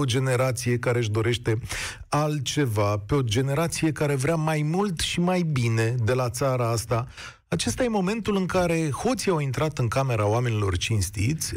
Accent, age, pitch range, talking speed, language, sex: native, 40-59, 115-175 Hz, 165 wpm, Romanian, male